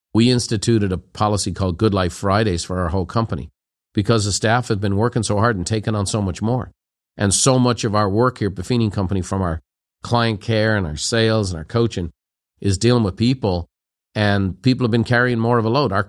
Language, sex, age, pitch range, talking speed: English, male, 50-69, 100-125 Hz, 225 wpm